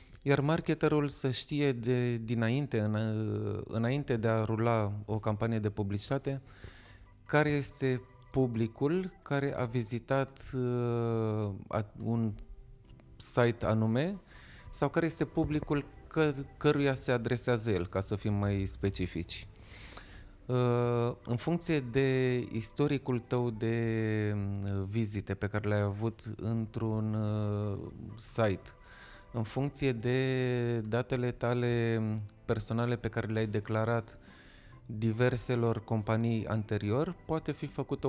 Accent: native